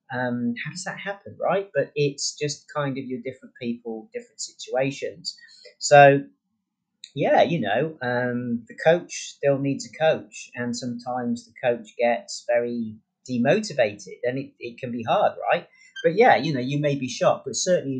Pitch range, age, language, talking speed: 120-190 Hz, 30-49, English, 170 wpm